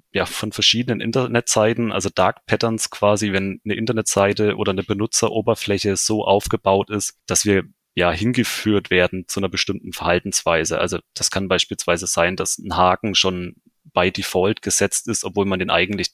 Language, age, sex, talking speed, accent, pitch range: German, 30-49, male, 160 wpm, German, 95-115 Hz